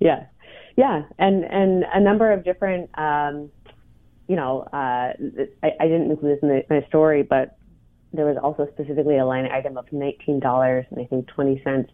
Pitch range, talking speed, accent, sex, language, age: 140-170 Hz, 180 wpm, American, female, English, 30-49